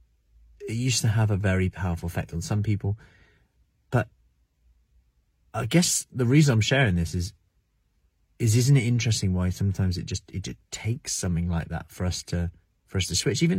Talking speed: 185 wpm